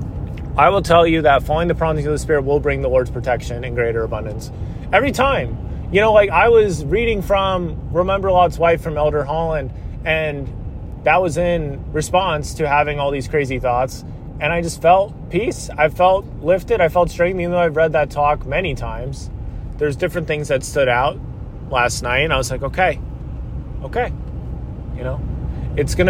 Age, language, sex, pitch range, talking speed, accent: 30-49, English, male, 135-185 Hz, 190 wpm, American